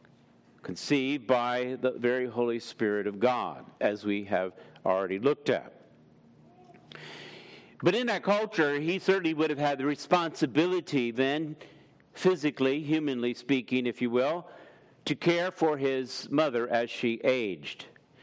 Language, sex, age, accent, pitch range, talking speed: English, male, 50-69, American, 130-155 Hz, 130 wpm